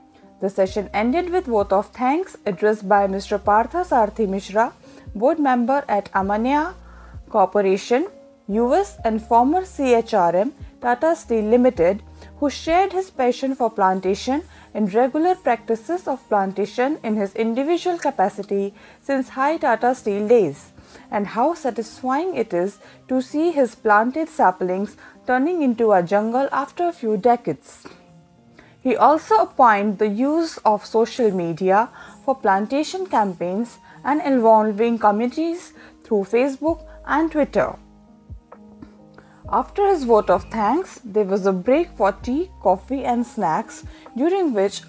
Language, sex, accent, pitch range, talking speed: Hindi, female, native, 205-285 Hz, 130 wpm